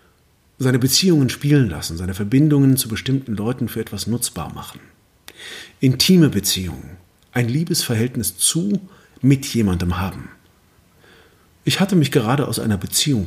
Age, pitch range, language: 40-59, 100-145 Hz, German